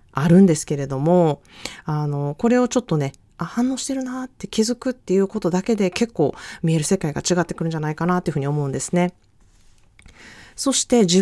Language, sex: Japanese, female